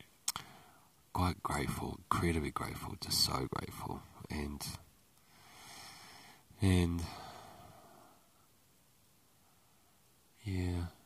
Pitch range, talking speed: 80-90 Hz, 55 wpm